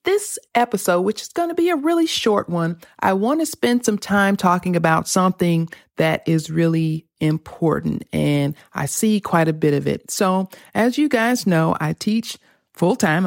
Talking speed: 180 wpm